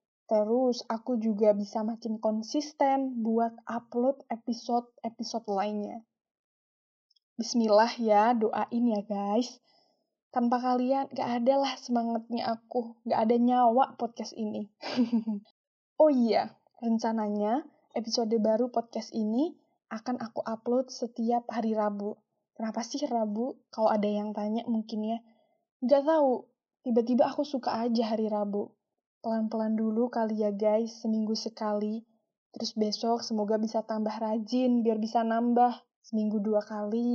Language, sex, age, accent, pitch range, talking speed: Indonesian, female, 10-29, native, 220-255 Hz, 125 wpm